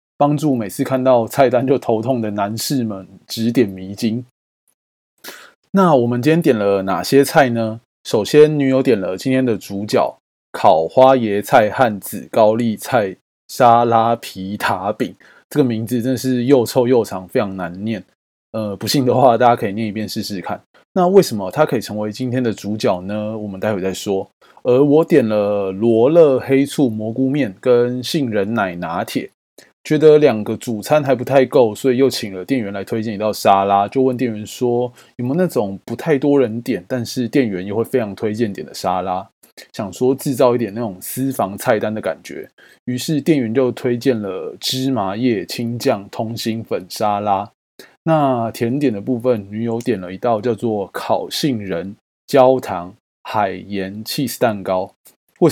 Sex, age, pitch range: male, 20-39, 105-130 Hz